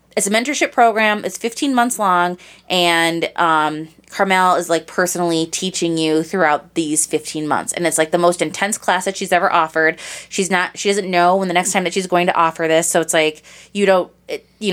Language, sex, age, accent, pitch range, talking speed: English, female, 20-39, American, 160-205 Hz, 215 wpm